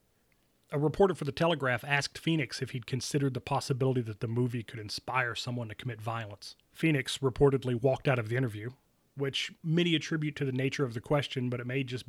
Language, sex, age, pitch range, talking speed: English, male, 30-49, 125-150 Hz, 205 wpm